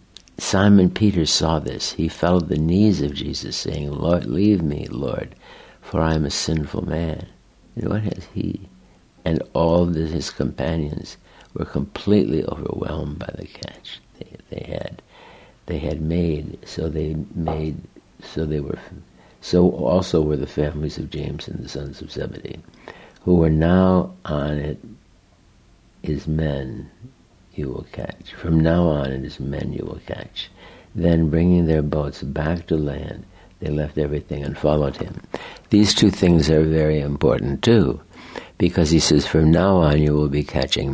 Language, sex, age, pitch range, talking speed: English, male, 60-79, 75-90 Hz, 160 wpm